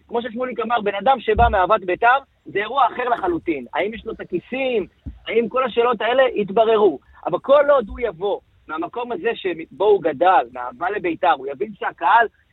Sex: male